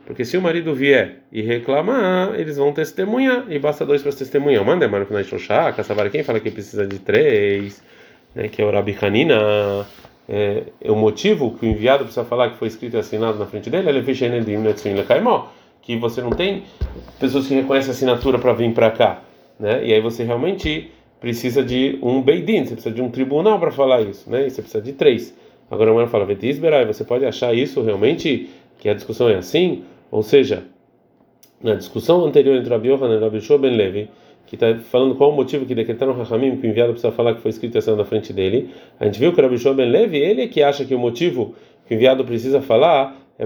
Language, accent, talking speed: Portuguese, Brazilian, 215 wpm